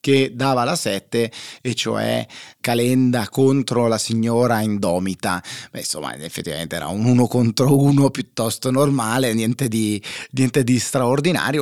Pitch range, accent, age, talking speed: 110-130 Hz, native, 30-49, 135 wpm